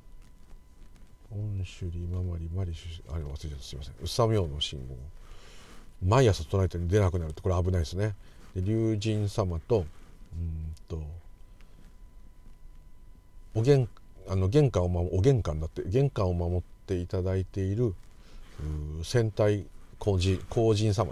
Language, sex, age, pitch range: Japanese, male, 50-69, 85-105 Hz